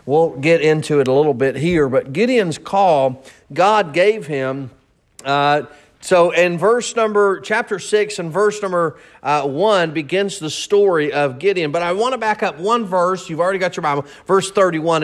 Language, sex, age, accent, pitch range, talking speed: English, male, 40-59, American, 160-210 Hz, 185 wpm